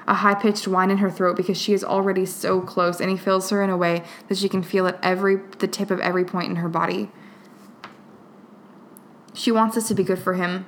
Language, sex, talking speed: English, female, 230 wpm